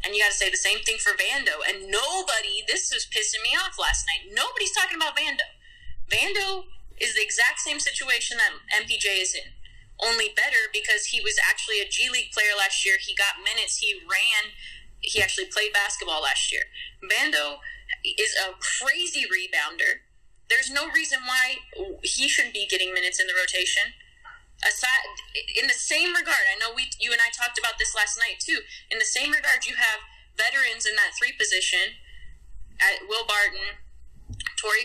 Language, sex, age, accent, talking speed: English, female, 20-39, American, 180 wpm